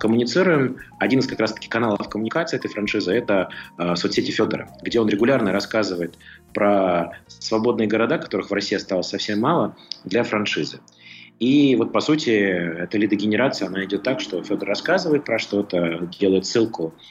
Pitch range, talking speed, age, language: 95-115 Hz, 160 wpm, 30-49, Russian